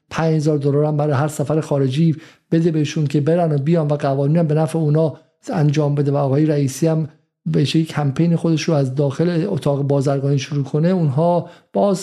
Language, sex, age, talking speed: Persian, male, 50-69, 190 wpm